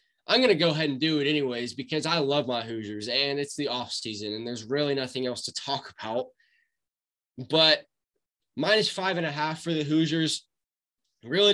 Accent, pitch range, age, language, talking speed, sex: American, 130-170 Hz, 20-39, English, 190 wpm, male